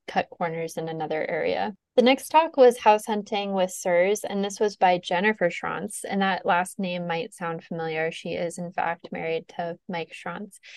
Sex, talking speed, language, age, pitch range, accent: female, 190 wpm, English, 20-39, 170-195 Hz, American